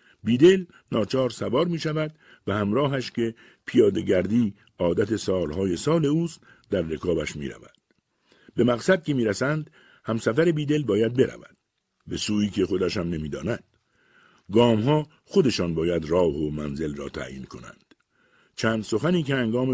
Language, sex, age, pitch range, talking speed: Persian, male, 60-79, 90-145 Hz, 140 wpm